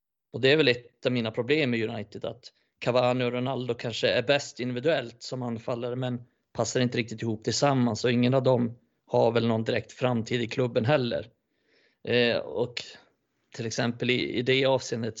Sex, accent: male, native